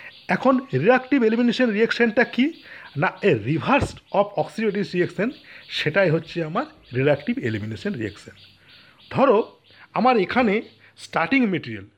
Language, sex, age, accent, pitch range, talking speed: Bengali, male, 50-69, native, 160-220 Hz, 85 wpm